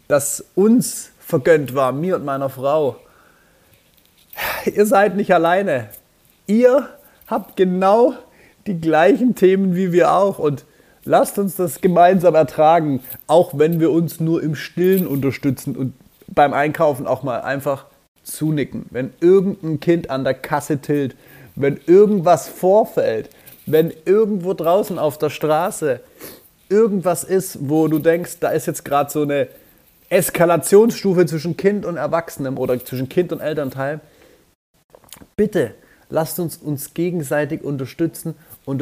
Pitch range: 140-200 Hz